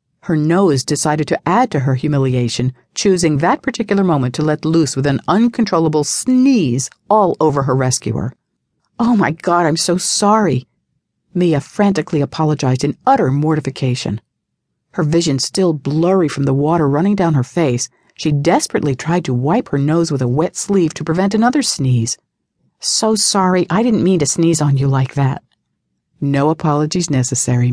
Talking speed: 160 wpm